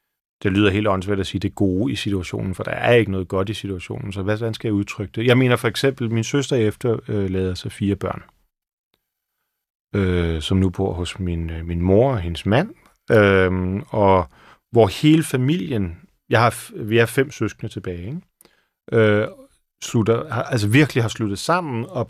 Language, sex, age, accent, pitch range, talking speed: Danish, male, 40-59, native, 95-115 Hz, 185 wpm